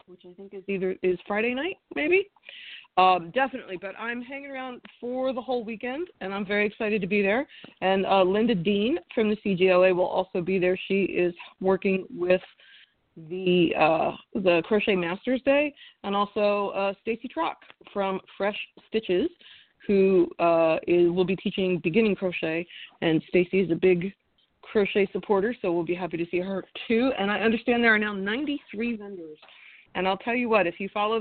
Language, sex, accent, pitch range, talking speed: English, female, American, 180-225 Hz, 180 wpm